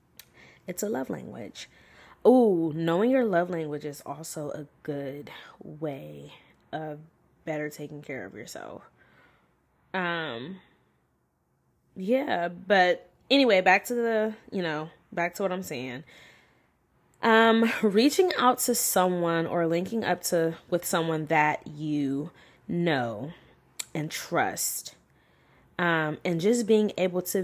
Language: English